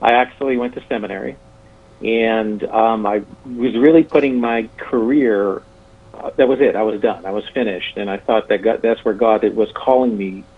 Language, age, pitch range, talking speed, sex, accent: English, 50-69, 105-125 Hz, 200 wpm, male, American